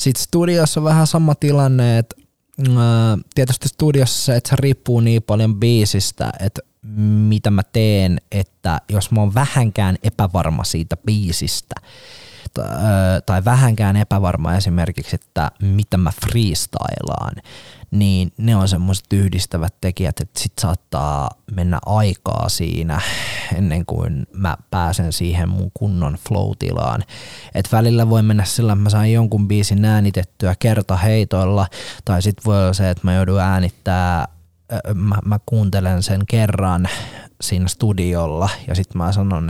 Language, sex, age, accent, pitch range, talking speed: Finnish, male, 20-39, native, 95-115 Hz, 130 wpm